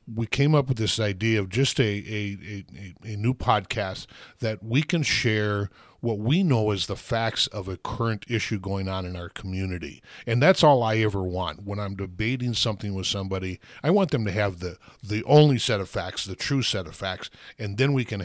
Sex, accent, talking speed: male, American, 215 wpm